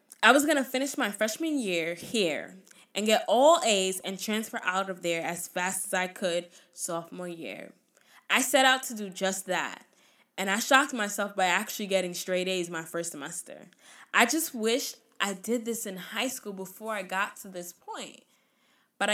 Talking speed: 185 wpm